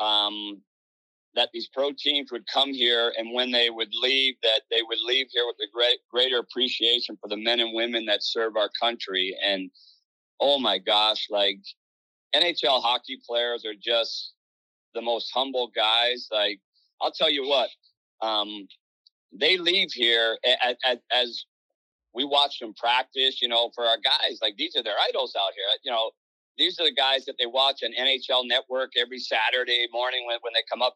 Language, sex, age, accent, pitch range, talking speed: English, male, 40-59, American, 105-130 Hz, 185 wpm